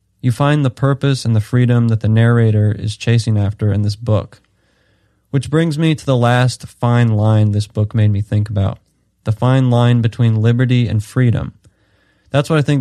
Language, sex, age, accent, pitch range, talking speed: English, male, 20-39, American, 110-125 Hz, 190 wpm